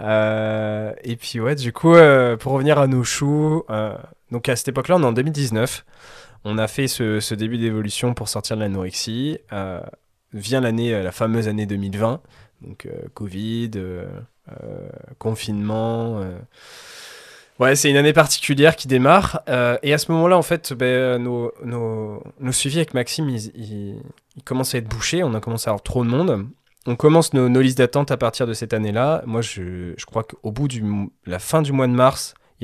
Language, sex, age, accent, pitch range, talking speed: French, male, 20-39, French, 105-130 Hz, 200 wpm